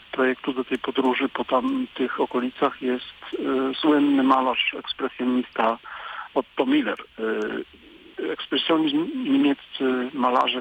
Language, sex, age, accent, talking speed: Polish, male, 50-69, native, 100 wpm